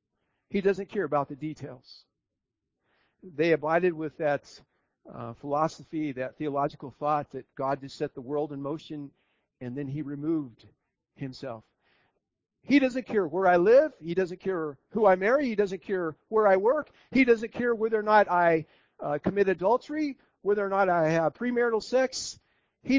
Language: English